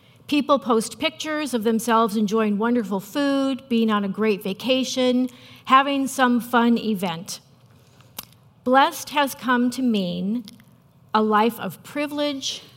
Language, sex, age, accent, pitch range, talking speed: English, female, 50-69, American, 185-255 Hz, 120 wpm